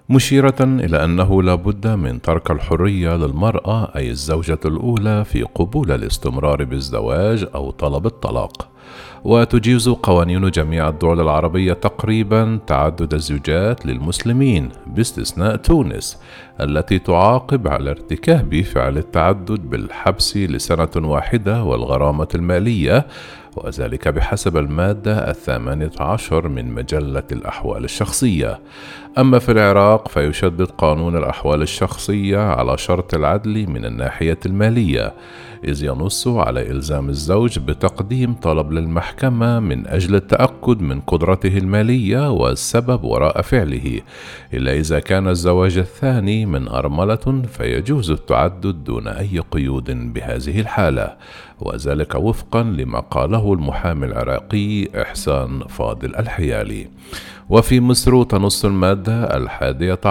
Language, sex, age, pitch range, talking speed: Arabic, male, 50-69, 75-110 Hz, 110 wpm